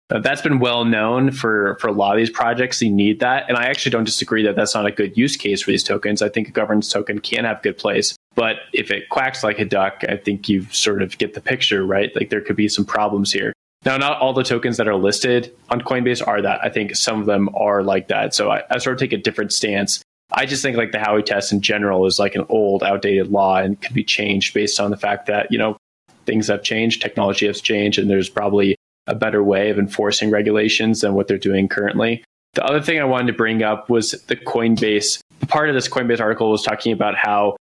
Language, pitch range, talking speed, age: English, 100-115 Hz, 250 wpm, 20-39